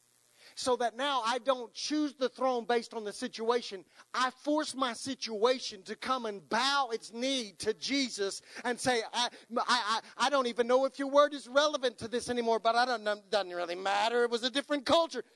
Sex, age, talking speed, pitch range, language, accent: male, 40-59, 200 wpm, 205-280 Hz, English, American